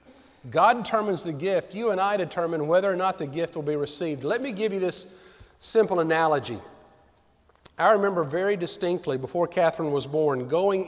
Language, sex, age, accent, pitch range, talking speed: English, male, 40-59, American, 155-200 Hz, 175 wpm